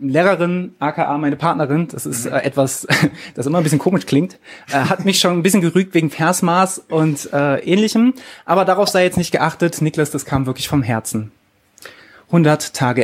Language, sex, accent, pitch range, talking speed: German, male, German, 135-190 Hz, 170 wpm